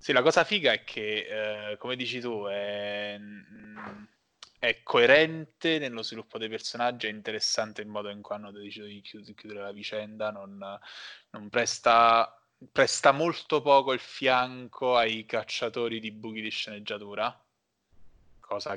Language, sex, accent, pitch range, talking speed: Italian, male, native, 105-120 Hz, 145 wpm